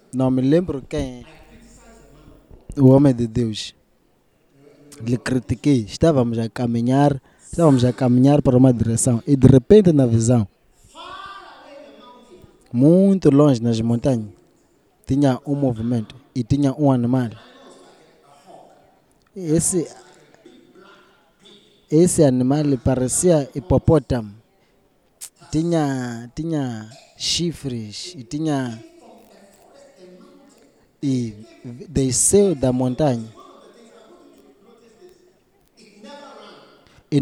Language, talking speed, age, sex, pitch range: Portuguese, 80 wpm, 20-39, male, 125-175 Hz